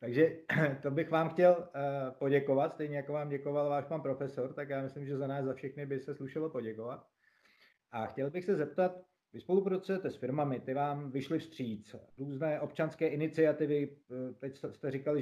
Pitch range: 130-150 Hz